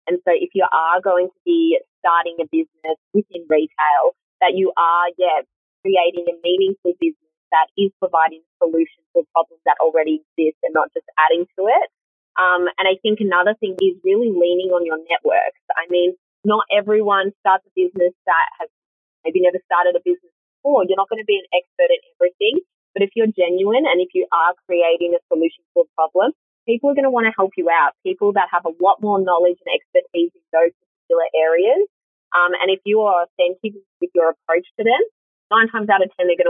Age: 20-39